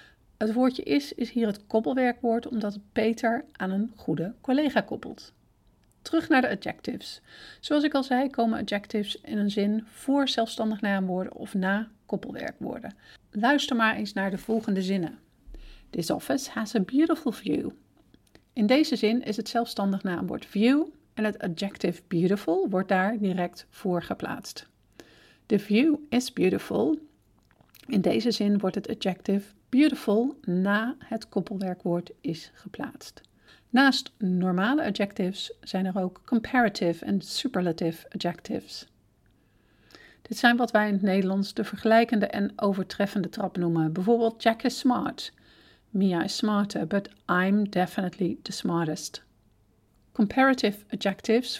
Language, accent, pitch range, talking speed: Dutch, Dutch, 190-235 Hz, 135 wpm